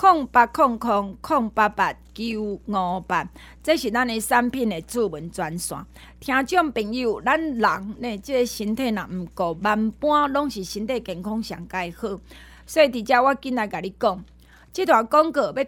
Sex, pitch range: female, 200-275 Hz